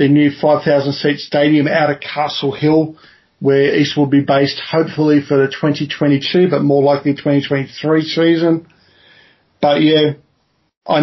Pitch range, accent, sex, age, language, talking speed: 145-160 Hz, Australian, male, 40-59, English, 135 wpm